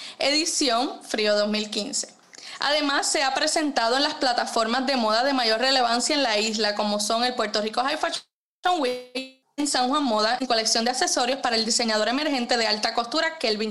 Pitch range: 235-290 Hz